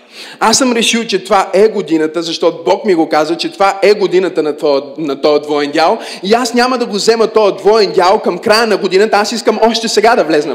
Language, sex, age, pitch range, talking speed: Bulgarian, male, 30-49, 210-270 Hz, 220 wpm